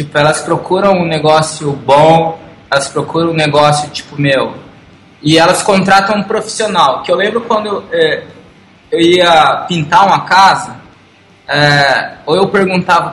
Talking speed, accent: 145 wpm, Brazilian